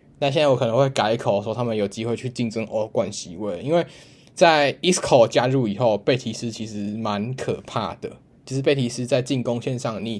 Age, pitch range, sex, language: 20-39, 115-140 Hz, male, Chinese